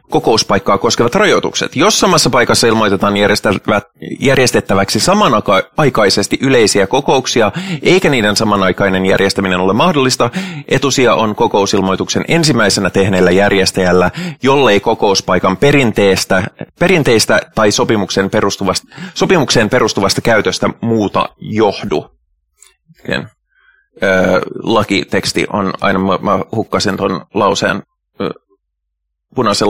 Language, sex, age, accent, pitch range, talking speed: Finnish, male, 30-49, native, 95-120 Hz, 90 wpm